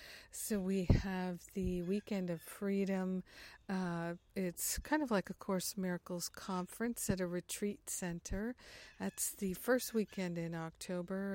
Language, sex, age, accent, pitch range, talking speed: English, female, 50-69, American, 175-195 Hz, 145 wpm